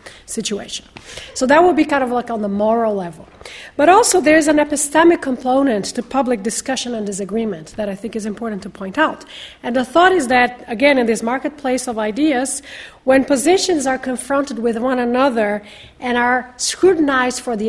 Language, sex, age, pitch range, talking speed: English, female, 40-59, 220-275 Hz, 185 wpm